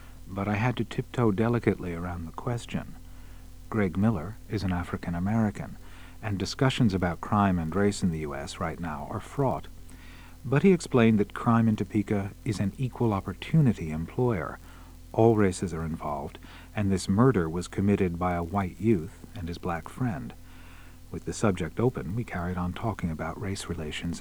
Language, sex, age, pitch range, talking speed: English, male, 50-69, 85-110 Hz, 165 wpm